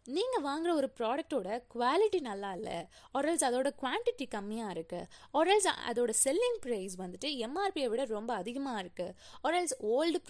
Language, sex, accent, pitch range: Tamil, female, native, 230-320 Hz